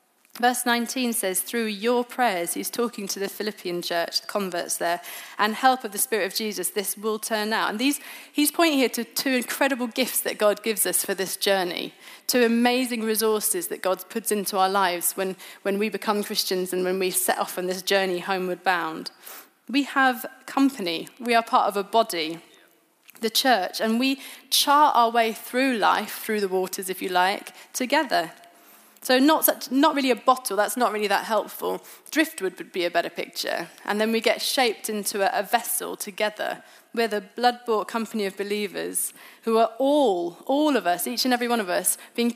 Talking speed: 195 wpm